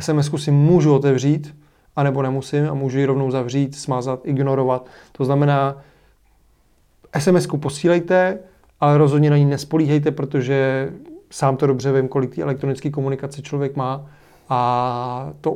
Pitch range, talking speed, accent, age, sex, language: 135-150 Hz, 135 wpm, native, 30-49, male, Czech